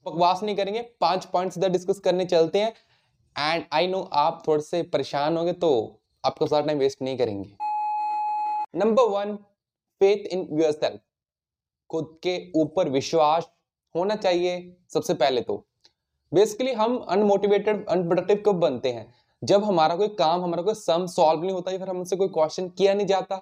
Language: Hindi